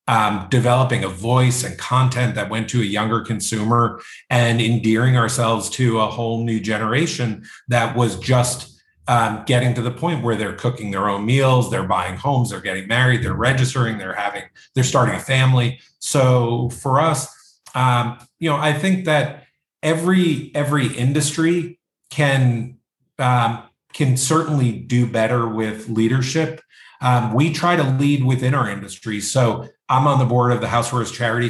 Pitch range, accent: 115-130 Hz, American